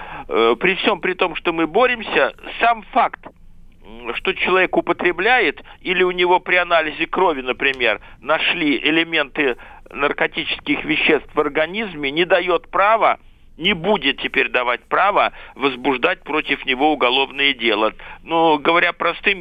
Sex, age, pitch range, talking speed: male, 50-69, 145-190 Hz, 125 wpm